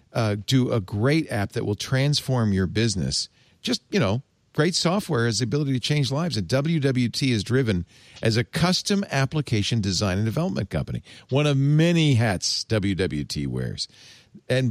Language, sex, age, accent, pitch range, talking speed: English, male, 50-69, American, 105-140 Hz, 165 wpm